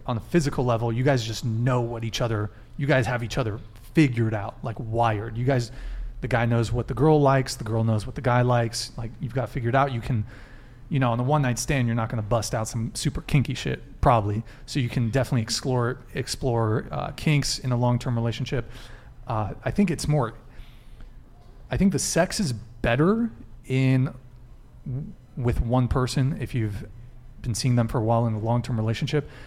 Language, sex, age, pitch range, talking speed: English, male, 30-49, 115-135 Hz, 200 wpm